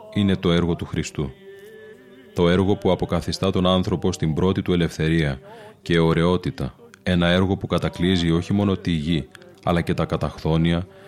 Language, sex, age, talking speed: Greek, male, 30-49, 155 wpm